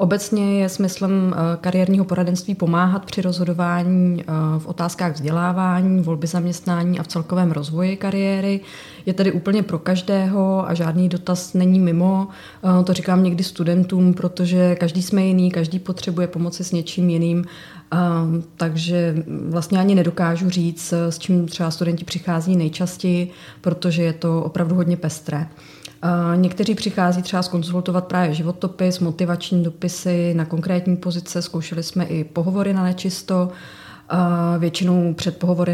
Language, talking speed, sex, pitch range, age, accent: Czech, 130 wpm, female, 170-185 Hz, 30-49, native